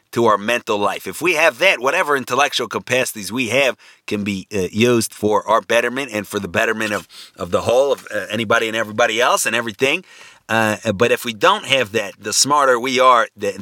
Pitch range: 105-130 Hz